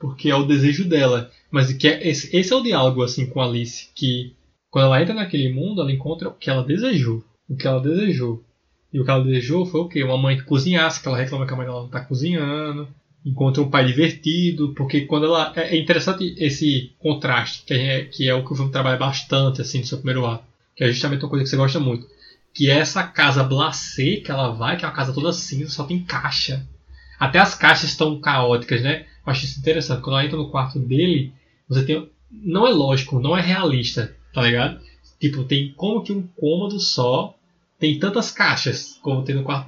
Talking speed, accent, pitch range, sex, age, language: 220 wpm, Brazilian, 130-160 Hz, male, 20-39, Portuguese